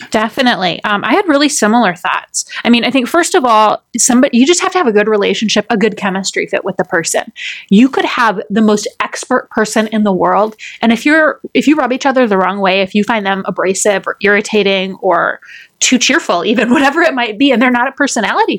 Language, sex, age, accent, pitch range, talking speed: English, female, 20-39, American, 205-255 Hz, 230 wpm